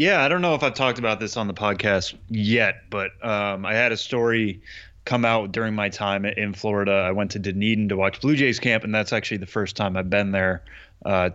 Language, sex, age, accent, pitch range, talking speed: English, male, 20-39, American, 100-120 Hz, 240 wpm